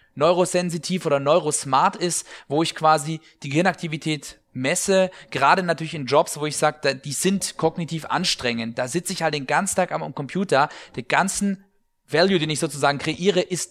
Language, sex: German, male